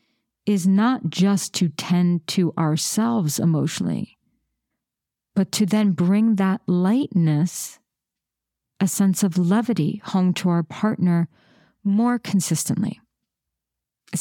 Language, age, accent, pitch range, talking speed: English, 50-69, American, 170-210 Hz, 105 wpm